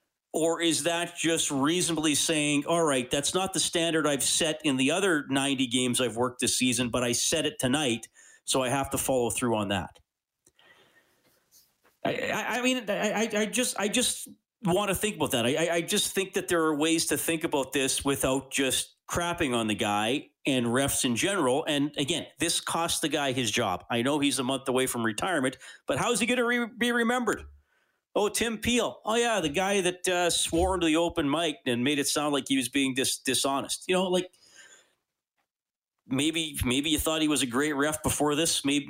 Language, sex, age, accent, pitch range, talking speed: English, male, 40-59, American, 130-175 Hz, 205 wpm